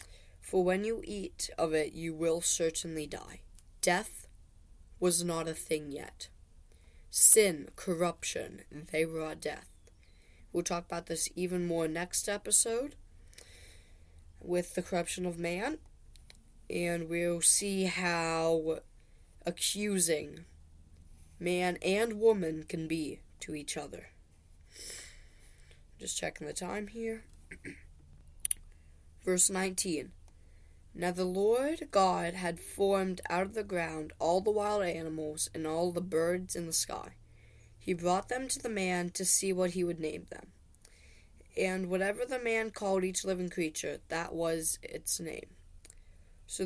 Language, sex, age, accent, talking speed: English, female, 20-39, American, 130 wpm